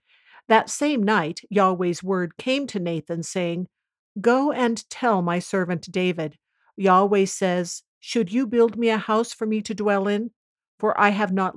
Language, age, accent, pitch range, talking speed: English, 50-69, American, 185-225 Hz, 165 wpm